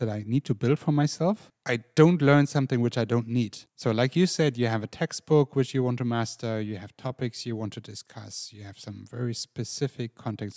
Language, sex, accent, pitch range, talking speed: English, male, German, 115-150 Hz, 235 wpm